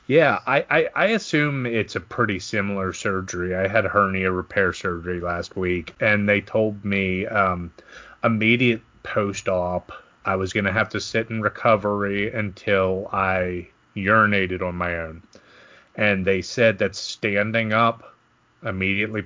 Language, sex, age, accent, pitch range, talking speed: English, male, 30-49, American, 95-110 Hz, 145 wpm